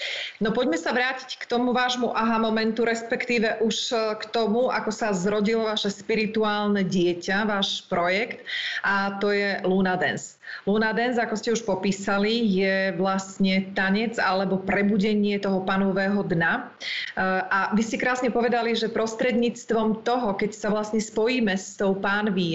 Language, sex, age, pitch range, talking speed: Slovak, female, 30-49, 195-230 Hz, 145 wpm